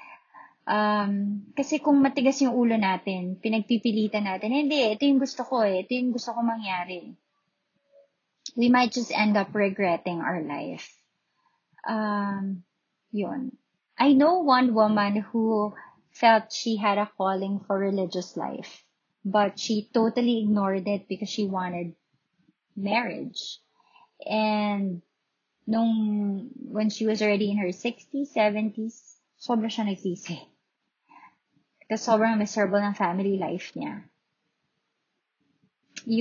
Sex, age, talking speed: female, 20-39, 120 wpm